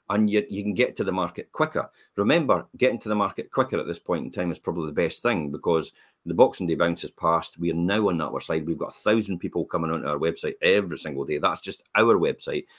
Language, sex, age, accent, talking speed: English, male, 40-59, British, 250 wpm